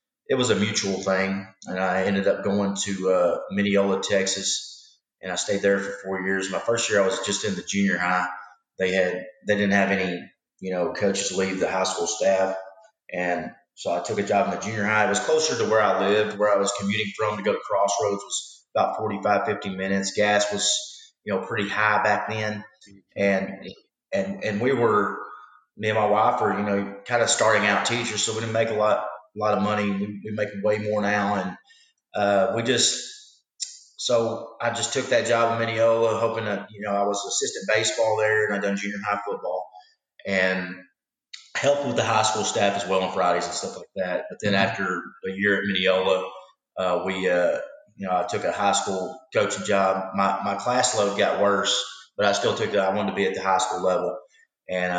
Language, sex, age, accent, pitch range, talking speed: English, male, 30-49, American, 95-105 Hz, 220 wpm